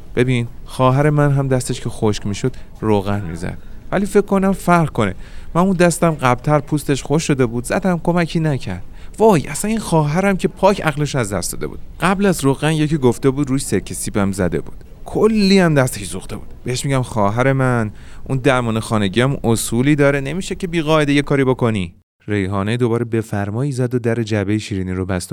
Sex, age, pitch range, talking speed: male, 30-49, 100-150 Hz, 185 wpm